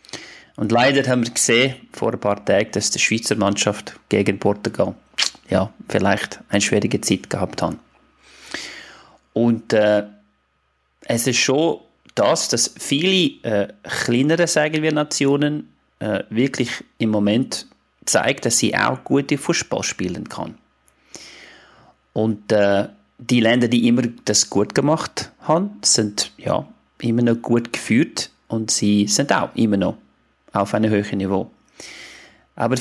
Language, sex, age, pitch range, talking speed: German, male, 30-49, 110-145 Hz, 135 wpm